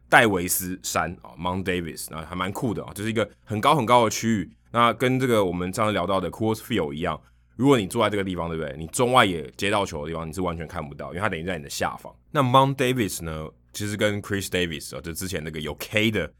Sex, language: male, Chinese